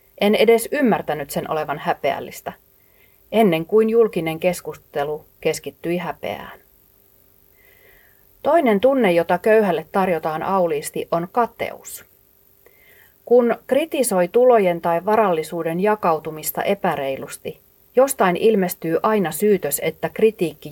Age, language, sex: 40-59, Finnish, female